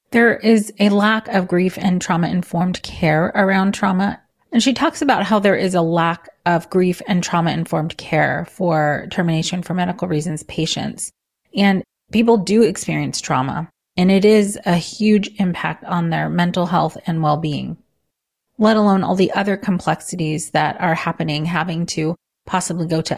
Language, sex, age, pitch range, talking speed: English, female, 30-49, 170-200 Hz, 165 wpm